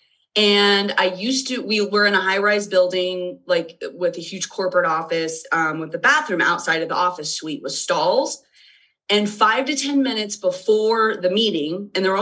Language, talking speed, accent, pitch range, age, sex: English, 190 wpm, American, 185-240 Hz, 30-49, female